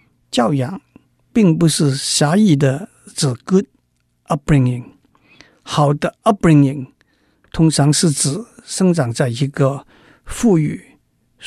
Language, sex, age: Chinese, male, 50-69